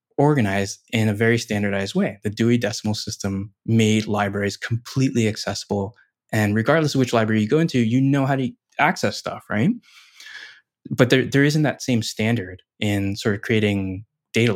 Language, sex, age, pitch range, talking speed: English, male, 20-39, 100-120 Hz, 170 wpm